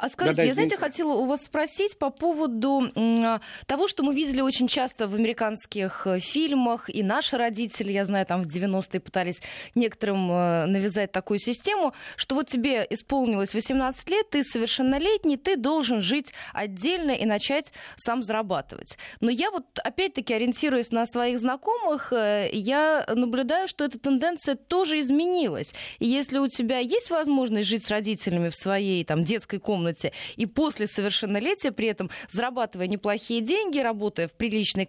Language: Russian